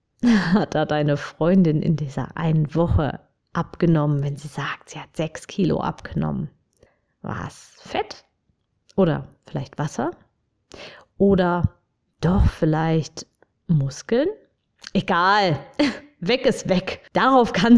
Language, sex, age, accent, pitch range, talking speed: German, female, 30-49, German, 160-230 Hz, 110 wpm